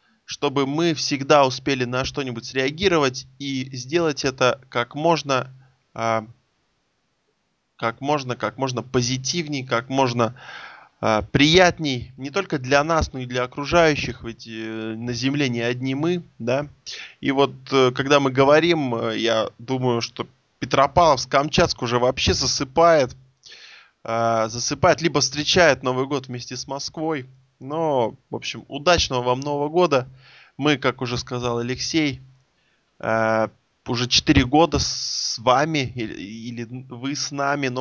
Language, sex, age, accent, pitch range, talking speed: Russian, male, 20-39, native, 125-150 Hz, 120 wpm